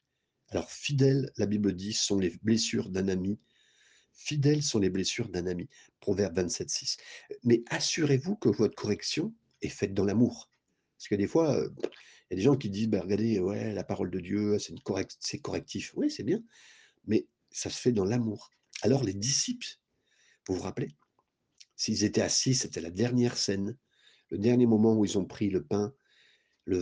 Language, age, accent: French, 50-69, French